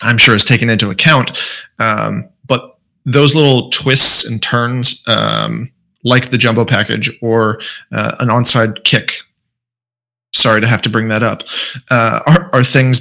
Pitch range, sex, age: 110-125 Hz, male, 20-39